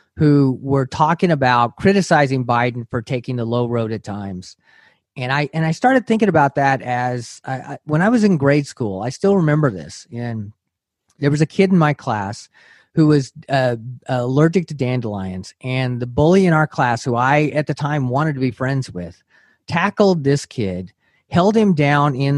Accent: American